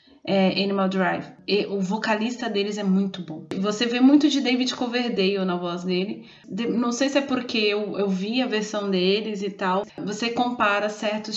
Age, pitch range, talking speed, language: 20-39, 195-225 Hz, 190 wpm, Portuguese